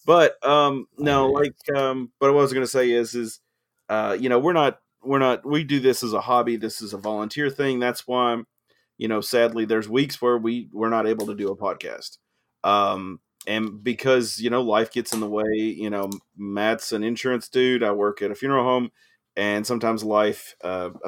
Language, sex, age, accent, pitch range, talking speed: English, male, 30-49, American, 105-125 Hz, 210 wpm